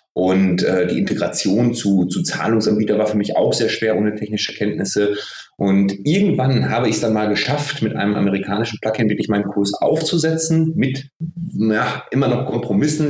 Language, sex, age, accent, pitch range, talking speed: German, male, 30-49, German, 105-140 Hz, 170 wpm